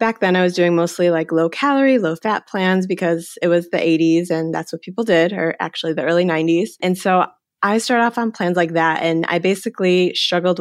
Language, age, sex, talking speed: English, 20-39, female, 225 wpm